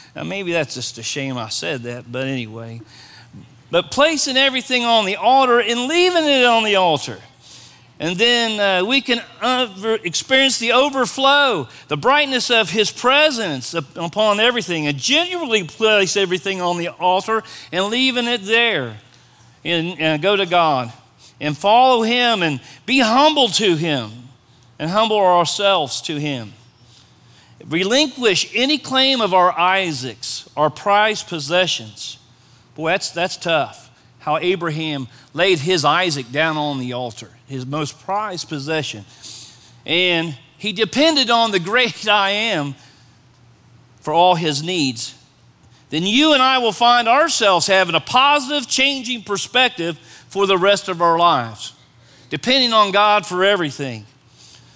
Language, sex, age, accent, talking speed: English, male, 40-59, American, 140 wpm